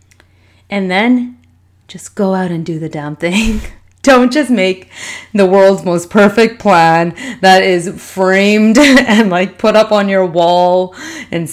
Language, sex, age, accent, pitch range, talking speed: English, female, 30-49, American, 155-190 Hz, 150 wpm